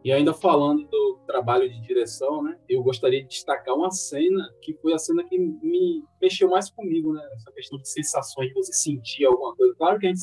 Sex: male